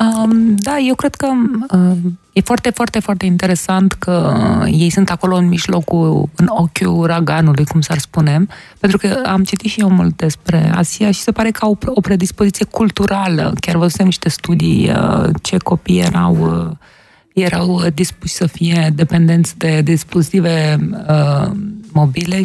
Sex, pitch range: female, 165-195 Hz